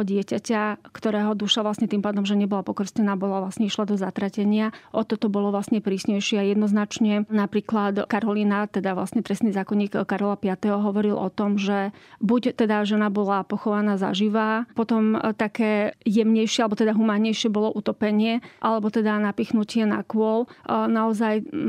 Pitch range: 210-230 Hz